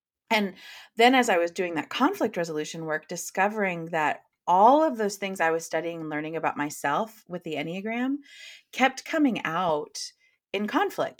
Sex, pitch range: female, 170-245 Hz